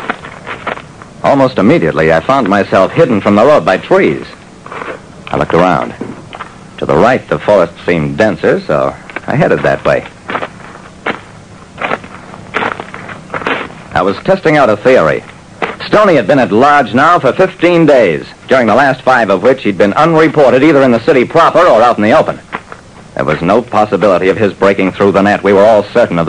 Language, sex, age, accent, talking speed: English, male, 60-79, American, 170 wpm